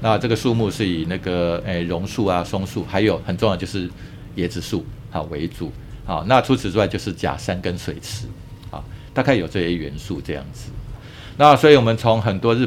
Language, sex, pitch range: Chinese, male, 90-115 Hz